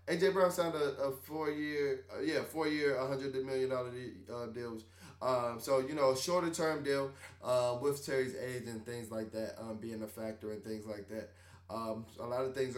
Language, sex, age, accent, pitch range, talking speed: English, male, 20-39, American, 110-140 Hz, 195 wpm